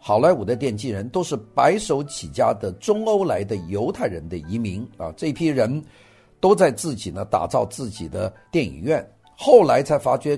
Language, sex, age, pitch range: Chinese, male, 50-69, 105-170 Hz